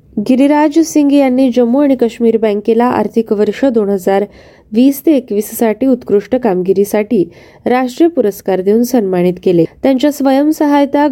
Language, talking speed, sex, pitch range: Marathi, 130 wpm, female, 205-265 Hz